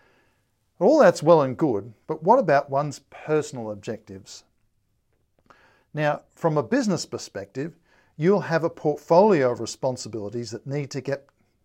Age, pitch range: 50-69, 120-150 Hz